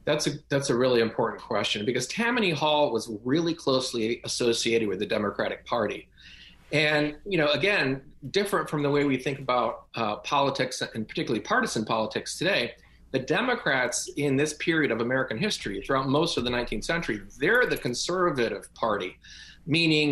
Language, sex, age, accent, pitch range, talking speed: English, male, 40-59, American, 120-160 Hz, 165 wpm